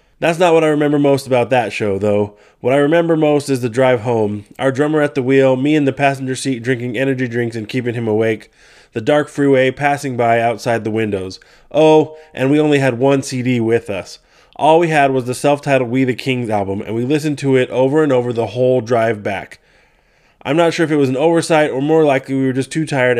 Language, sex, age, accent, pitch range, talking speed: English, male, 20-39, American, 120-145 Hz, 235 wpm